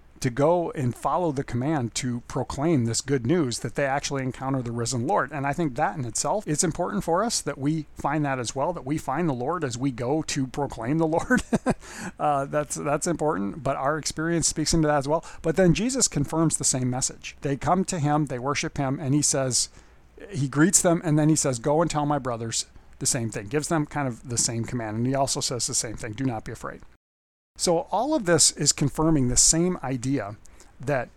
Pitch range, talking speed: 125-160 Hz, 225 wpm